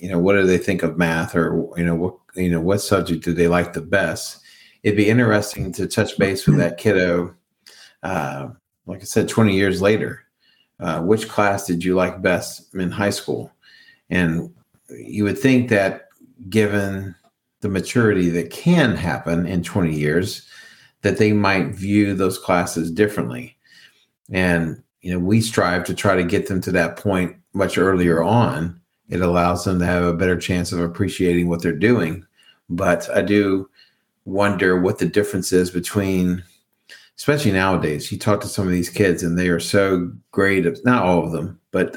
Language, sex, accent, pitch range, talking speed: English, male, American, 85-100 Hz, 180 wpm